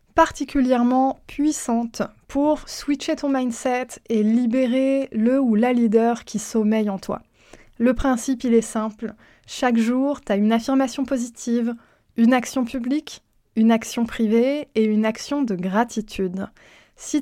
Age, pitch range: 20-39, 220-265 Hz